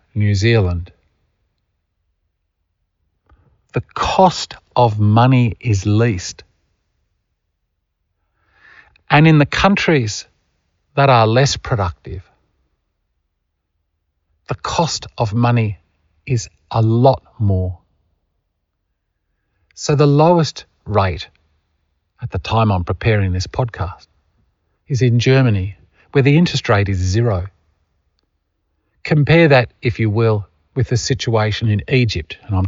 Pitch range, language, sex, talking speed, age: 85-115 Hz, English, male, 105 wpm, 50-69